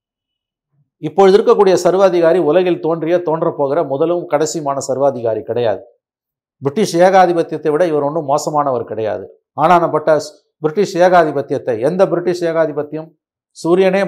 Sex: male